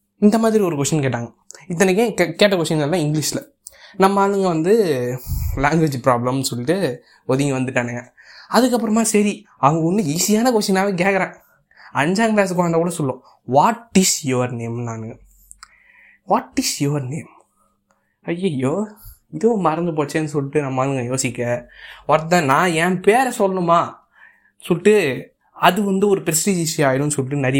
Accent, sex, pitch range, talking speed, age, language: native, male, 135-195 Hz, 130 wpm, 20-39, Tamil